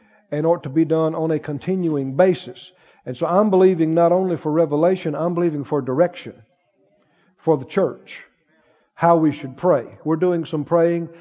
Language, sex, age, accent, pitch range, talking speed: English, male, 50-69, American, 155-190 Hz, 170 wpm